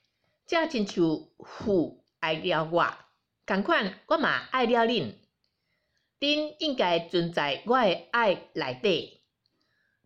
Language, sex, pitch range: Chinese, female, 180-255 Hz